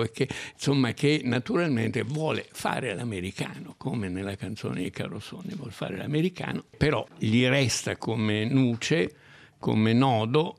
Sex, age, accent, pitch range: male, 60-79, native, 95-120 Hz